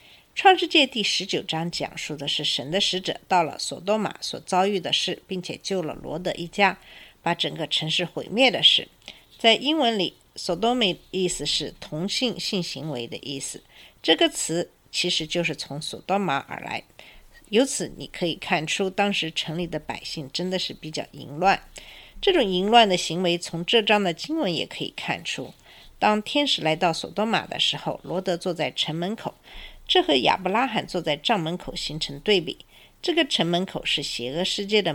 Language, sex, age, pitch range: Chinese, female, 50-69, 160-220 Hz